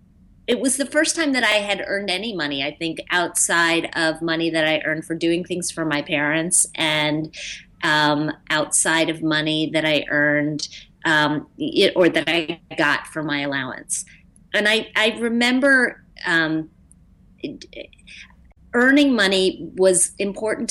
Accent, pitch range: American, 150-190 Hz